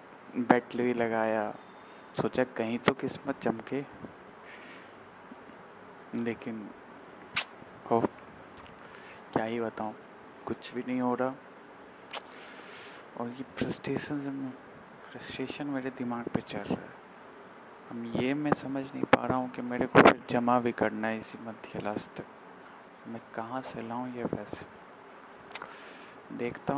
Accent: native